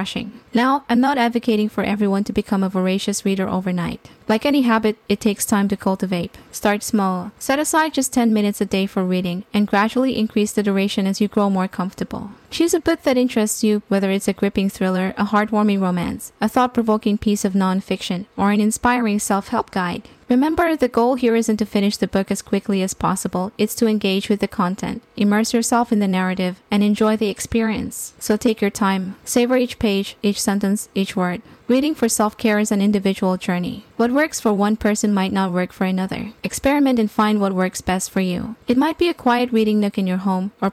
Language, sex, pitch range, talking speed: English, female, 195-225 Hz, 205 wpm